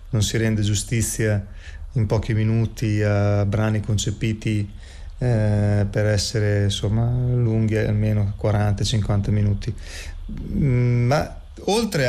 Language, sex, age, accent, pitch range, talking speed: Italian, male, 30-49, native, 105-130 Hz, 95 wpm